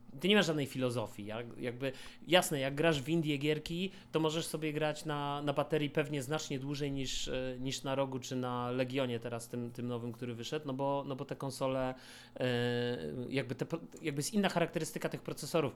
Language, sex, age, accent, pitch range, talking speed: Polish, male, 30-49, native, 120-145 Hz, 190 wpm